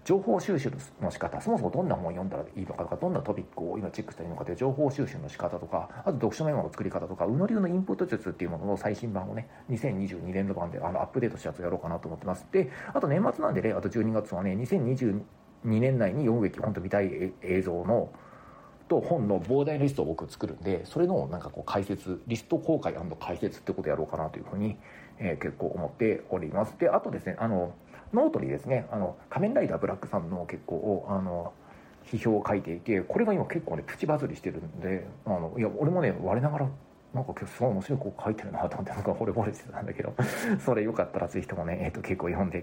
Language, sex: Japanese, male